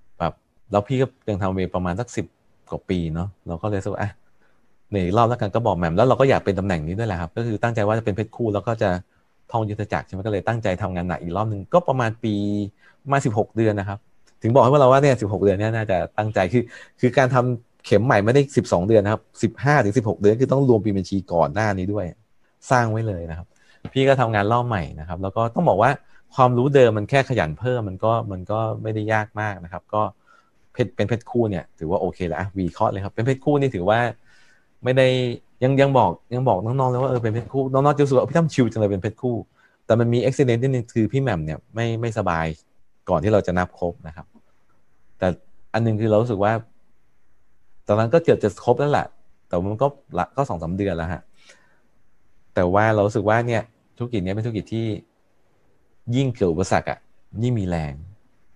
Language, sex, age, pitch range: English, male, 30-49, 95-120 Hz